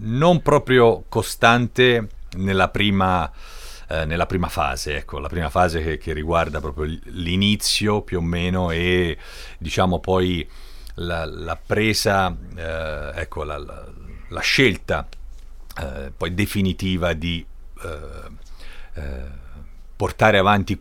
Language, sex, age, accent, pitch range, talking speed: Italian, male, 40-59, native, 80-105 Hz, 120 wpm